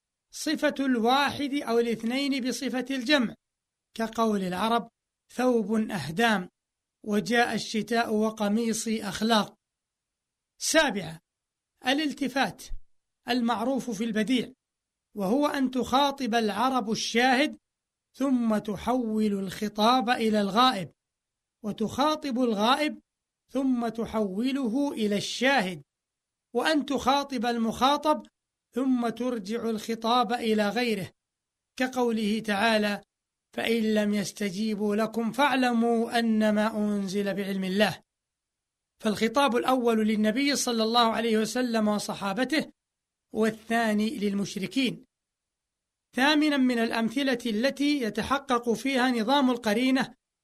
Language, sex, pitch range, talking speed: Arabic, male, 215-255 Hz, 85 wpm